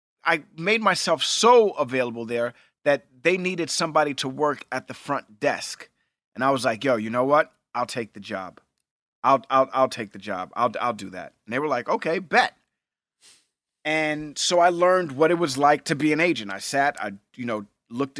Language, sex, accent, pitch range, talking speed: English, male, American, 115-145 Hz, 205 wpm